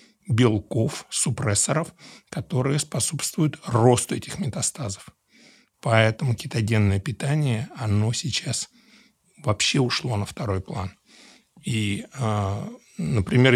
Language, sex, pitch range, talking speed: Russian, male, 105-140 Hz, 85 wpm